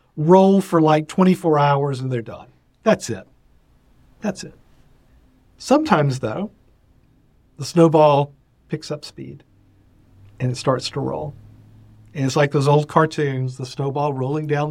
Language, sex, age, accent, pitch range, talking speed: English, male, 50-69, American, 125-160 Hz, 140 wpm